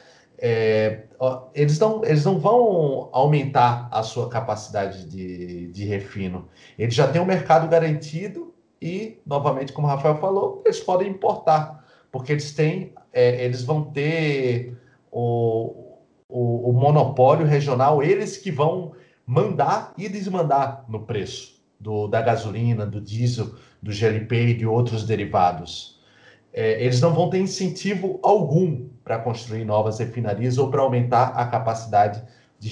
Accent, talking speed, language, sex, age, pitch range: Brazilian, 140 wpm, Portuguese, male, 40-59, 115-150 Hz